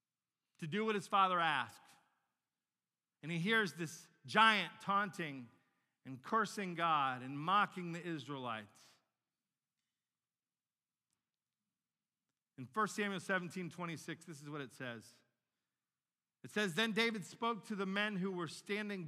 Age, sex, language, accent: 40-59, male, English, American